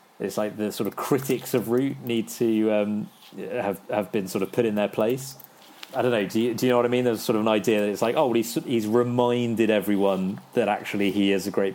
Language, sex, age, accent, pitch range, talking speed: English, male, 30-49, British, 100-120 Hz, 260 wpm